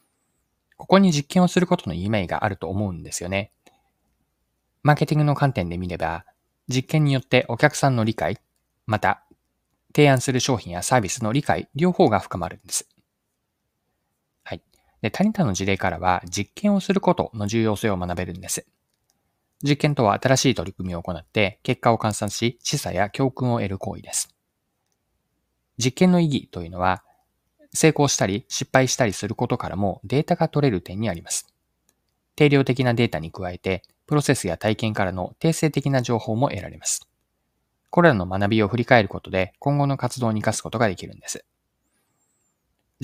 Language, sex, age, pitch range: Japanese, male, 20-39, 95-140 Hz